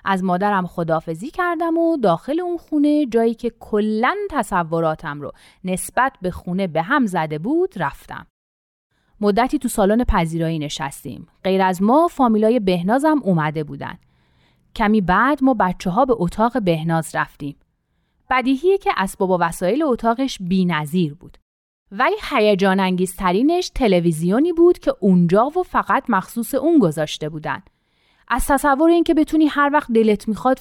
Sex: female